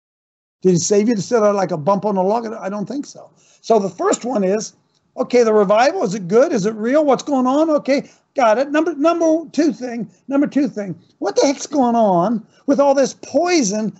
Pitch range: 185-255 Hz